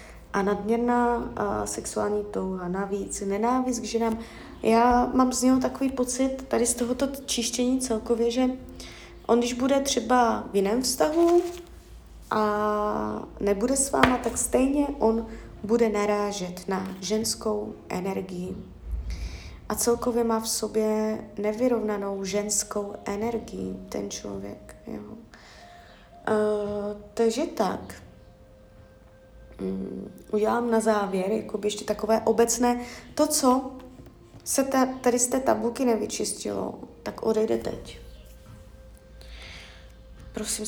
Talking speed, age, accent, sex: 105 wpm, 20-39, native, female